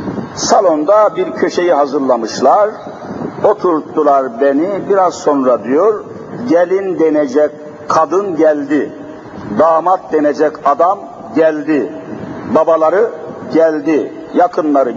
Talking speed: 80 wpm